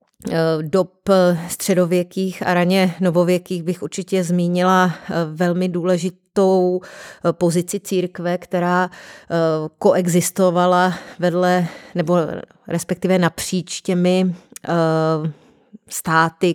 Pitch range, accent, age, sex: 175-190 Hz, native, 30-49, female